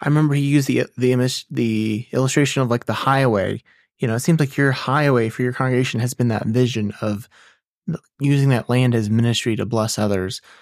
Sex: male